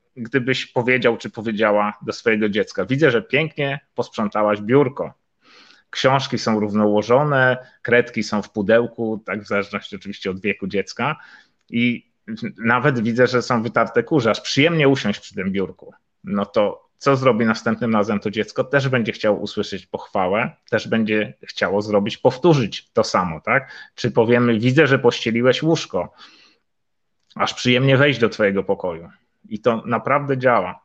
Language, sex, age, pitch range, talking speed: Polish, male, 30-49, 110-135 Hz, 150 wpm